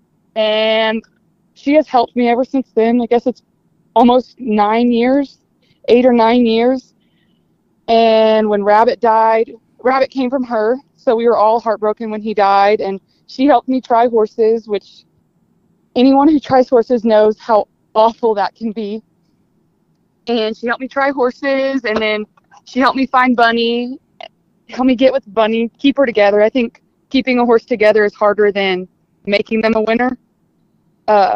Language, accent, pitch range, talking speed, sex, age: English, American, 210-245 Hz, 165 wpm, female, 20-39